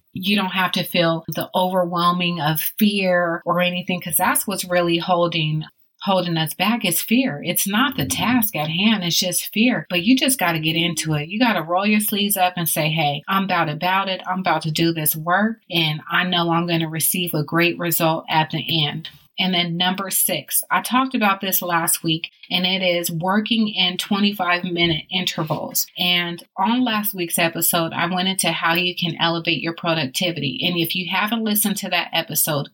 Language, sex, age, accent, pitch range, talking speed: English, female, 30-49, American, 165-195 Hz, 205 wpm